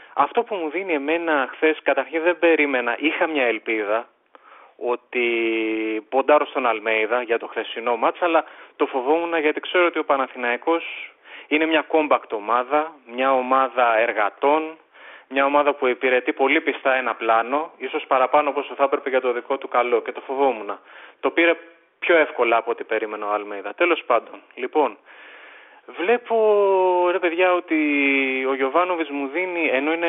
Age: 30-49